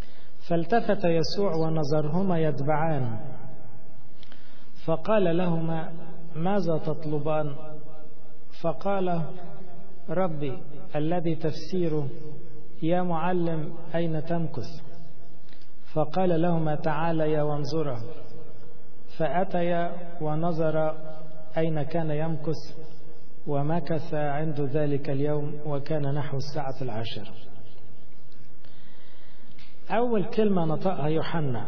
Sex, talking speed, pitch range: male, 70 wpm, 140-170 Hz